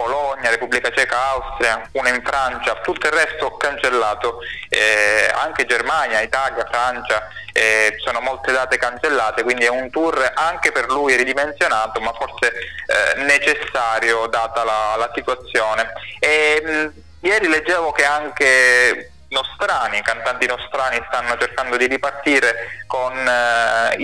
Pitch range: 120-140 Hz